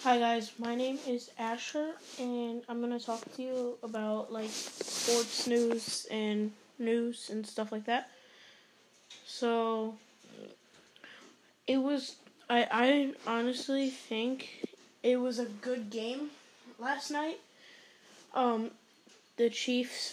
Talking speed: 120 wpm